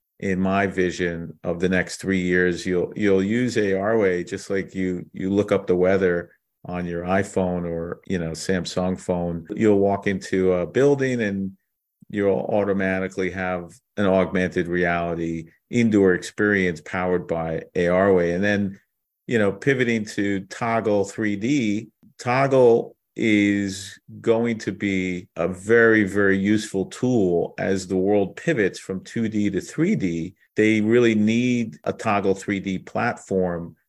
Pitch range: 90-105 Hz